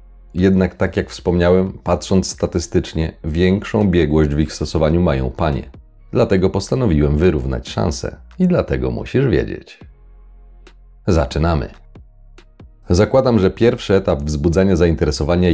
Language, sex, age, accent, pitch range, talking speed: Polish, male, 40-59, native, 80-100 Hz, 110 wpm